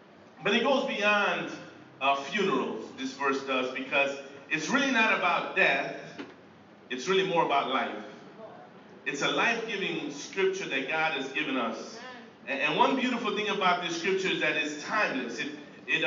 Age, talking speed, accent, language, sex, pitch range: 40-59, 160 wpm, American, English, male, 140-190 Hz